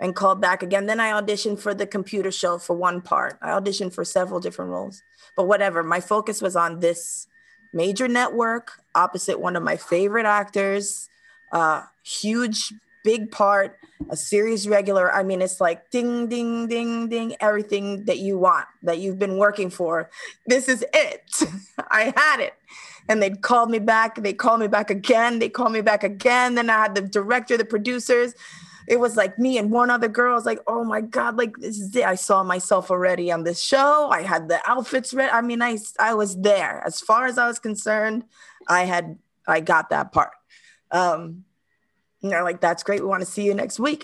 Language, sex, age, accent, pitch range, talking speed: English, female, 20-39, American, 200-260 Hz, 200 wpm